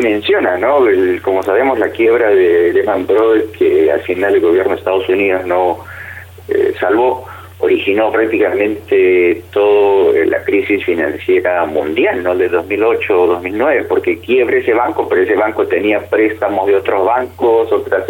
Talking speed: 155 wpm